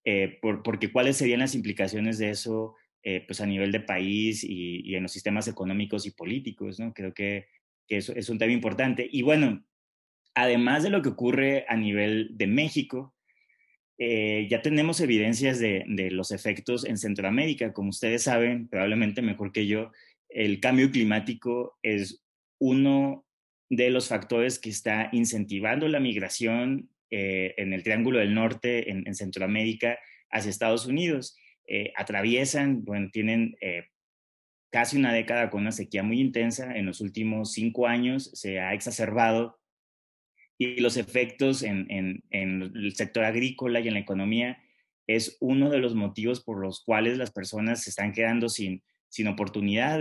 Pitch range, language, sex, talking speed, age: 100-120 Hz, Spanish, male, 160 wpm, 30-49